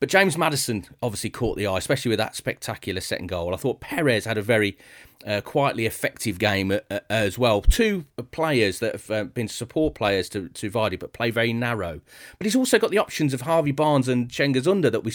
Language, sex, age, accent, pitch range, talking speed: English, male, 30-49, British, 100-130 Hz, 220 wpm